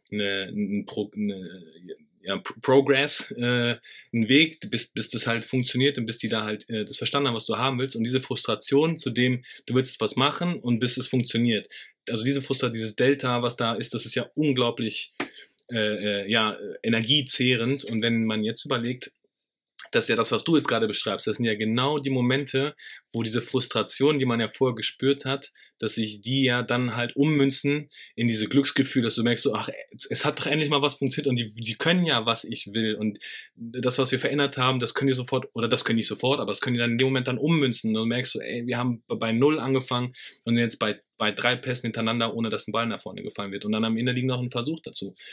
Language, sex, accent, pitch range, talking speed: German, male, German, 110-130 Hz, 230 wpm